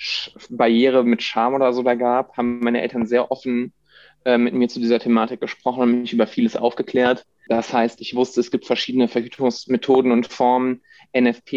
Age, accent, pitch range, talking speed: 20-39, German, 115-125 Hz, 180 wpm